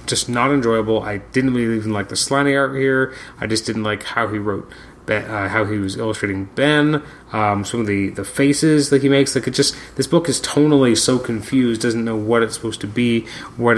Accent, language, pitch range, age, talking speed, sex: American, English, 100-130 Hz, 30-49, 225 wpm, male